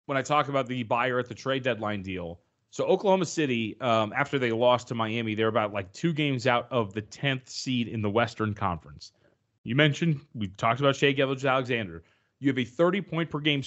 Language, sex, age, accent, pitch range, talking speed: English, male, 30-49, American, 115-165 Hz, 200 wpm